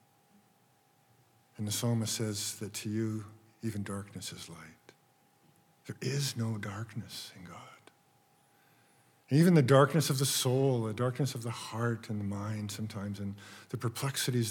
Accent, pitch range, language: American, 105-130 Hz, English